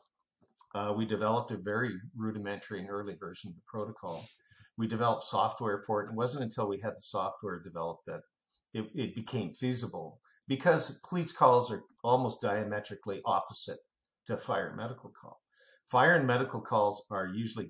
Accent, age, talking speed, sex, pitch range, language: American, 50-69, 165 wpm, male, 100-125 Hz, English